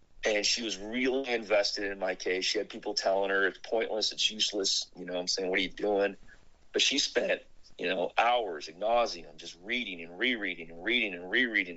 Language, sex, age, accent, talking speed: English, male, 40-59, American, 210 wpm